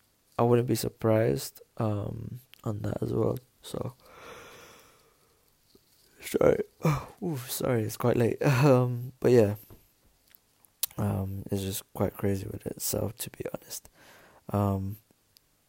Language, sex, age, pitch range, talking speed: English, male, 20-39, 100-115 Hz, 110 wpm